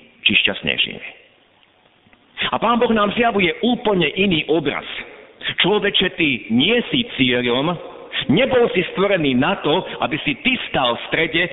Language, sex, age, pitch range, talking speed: Slovak, male, 50-69, 130-200 Hz, 130 wpm